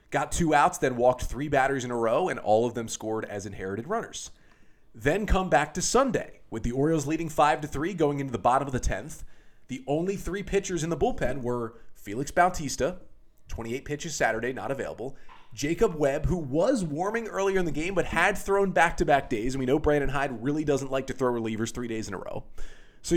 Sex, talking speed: male, 210 wpm